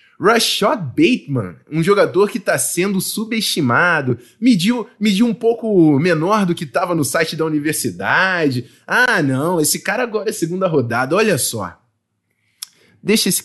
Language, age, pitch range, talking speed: Portuguese, 20-39, 130-180 Hz, 145 wpm